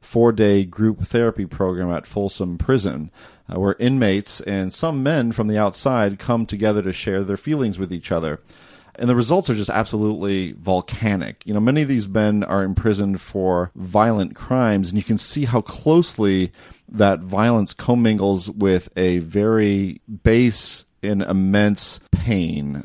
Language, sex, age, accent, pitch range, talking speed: English, male, 40-59, American, 90-110 Hz, 160 wpm